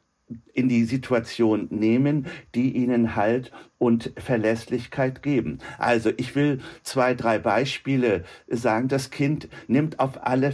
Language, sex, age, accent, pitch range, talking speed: German, male, 50-69, German, 120-150 Hz, 125 wpm